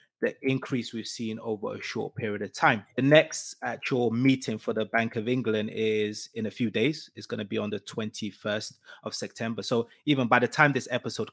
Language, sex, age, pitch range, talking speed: English, male, 20-39, 110-125 Hz, 210 wpm